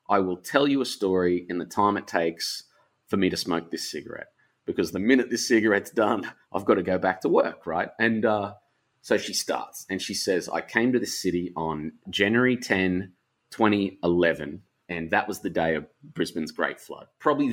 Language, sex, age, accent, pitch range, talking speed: English, male, 30-49, Australian, 85-110 Hz, 200 wpm